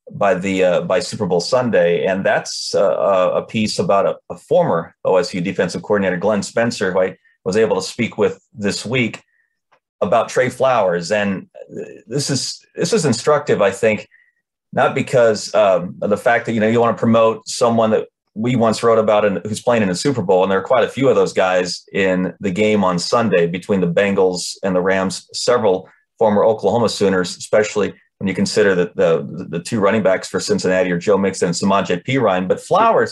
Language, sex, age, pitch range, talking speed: English, male, 30-49, 95-130 Hz, 200 wpm